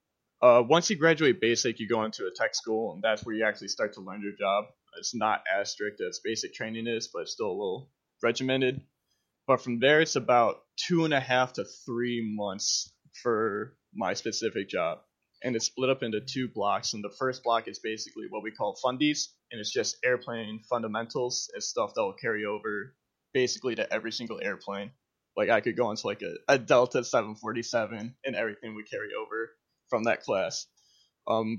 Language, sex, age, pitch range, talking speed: English, male, 20-39, 110-130 Hz, 195 wpm